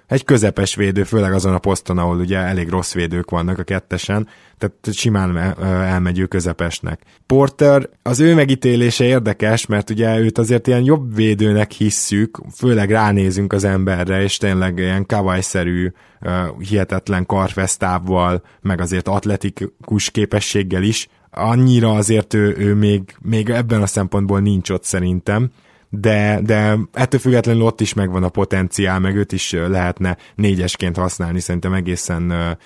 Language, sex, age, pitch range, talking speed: Hungarian, male, 20-39, 90-110 Hz, 140 wpm